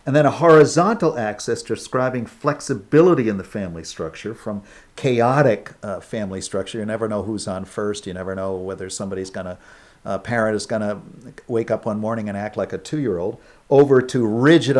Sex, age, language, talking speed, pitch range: male, 50-69, English, 185 wpm, 105-135 Hz